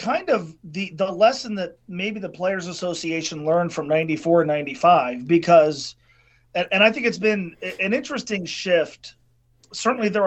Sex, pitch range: male, 155-200 Hz